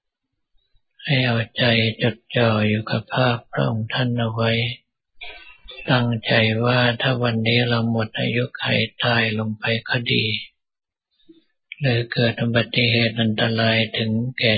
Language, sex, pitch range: Thai, male, 110-125 Hz